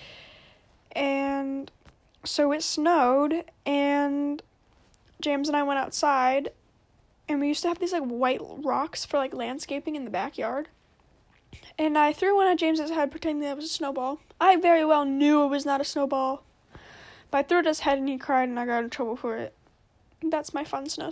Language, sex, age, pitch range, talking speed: English, female, 10-29, 280-330 Hz, 195 wpm